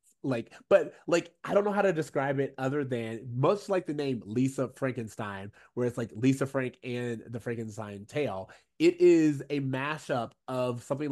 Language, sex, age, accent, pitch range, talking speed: English, male, 20-39, American, 125-150 Hz, 180 wpm